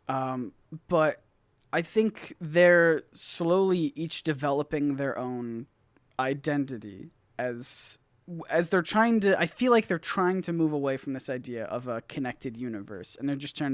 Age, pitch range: 20-39, 125-170 Hz